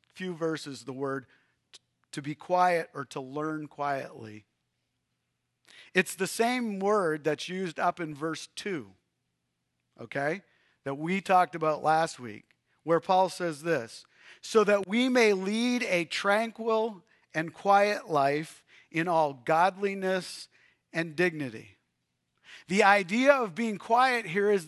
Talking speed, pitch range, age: 130 wpm, 165-230 Hz, 50-69